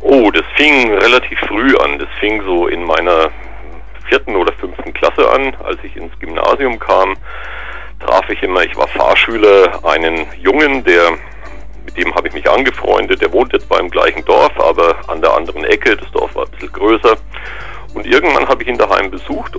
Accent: German